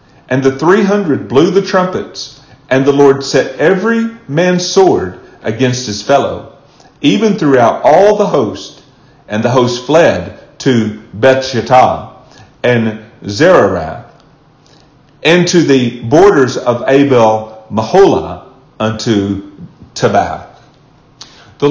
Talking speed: 110 wpm